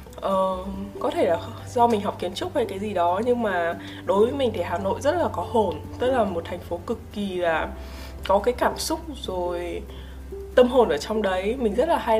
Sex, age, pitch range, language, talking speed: female, 20-39, 175-230 Hz, Vietnamese, 230 wpm